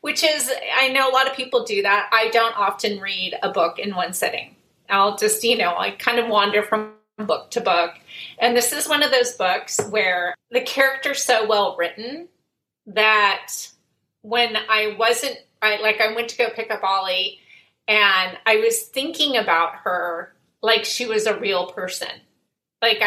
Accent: American